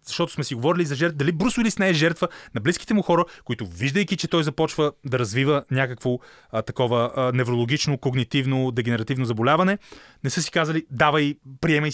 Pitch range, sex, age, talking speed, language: 125-160 Hz, male, 30-49, 185 wpm, Bulgarian